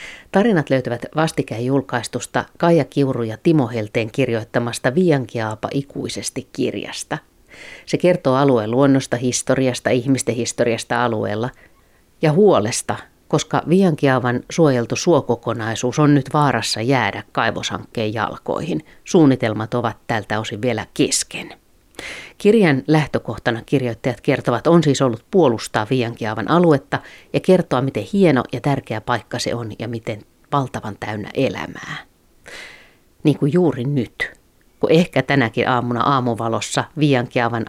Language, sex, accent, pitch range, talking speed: Finnish, female, native, 115-145 Hz, 115 wpm